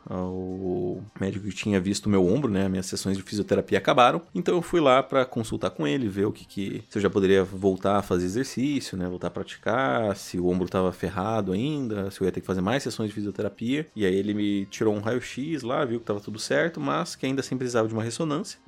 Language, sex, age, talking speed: Portuguese, male, 20-39, 240 wpm